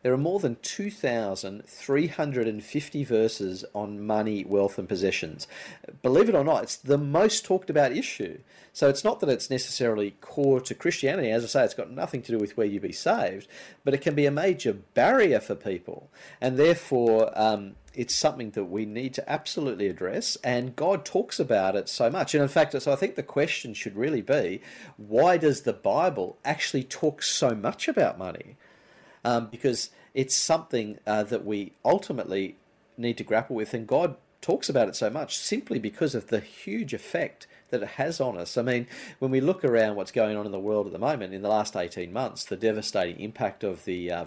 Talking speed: 200 wpm